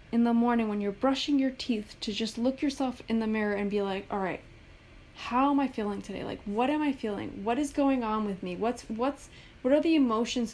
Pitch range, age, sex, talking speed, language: 205-250 Hz, 20-39, female, 240 wpm, English